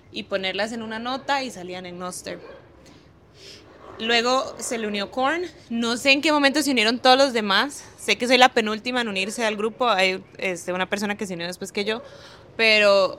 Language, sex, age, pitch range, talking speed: Spanish, female, 20-39, 190-230 Hz, 200 wpm